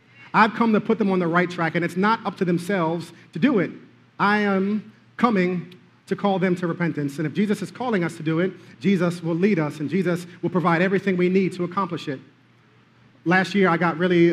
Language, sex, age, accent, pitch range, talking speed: English, male, 40-59, American, 160-190 Hz, 225 wpm